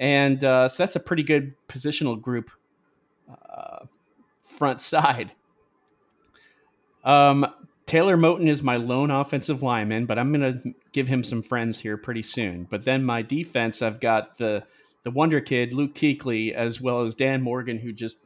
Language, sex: English, male